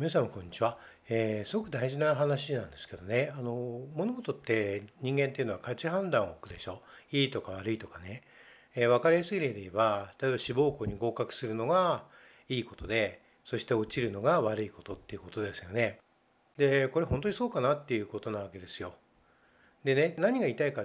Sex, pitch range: male, 115-165 Hz